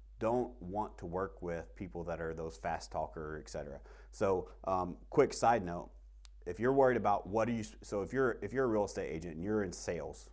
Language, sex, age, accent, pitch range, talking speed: English, male, 30-49, American, 95-120 Hz, 215 wpm